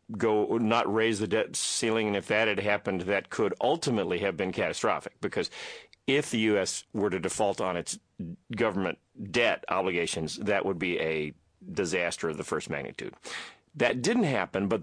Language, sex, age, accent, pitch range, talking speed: English, male, 40-59, American, 95-115 Hz, 170 wpm